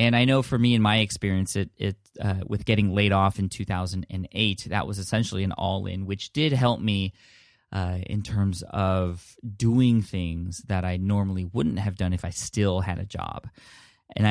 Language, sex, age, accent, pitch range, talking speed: English, male, 20-39, American, 95-110 Hz, 205 wpm